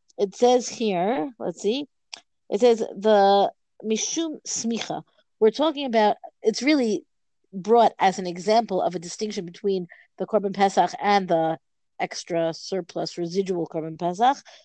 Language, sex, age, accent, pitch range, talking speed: English, female, 50-69, American, 180-225 Hz, 135 wpm